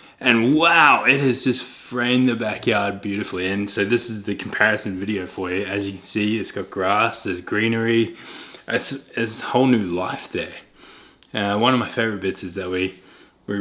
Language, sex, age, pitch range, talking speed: English, male, 20-39, 95-110 Hz, 190 wpm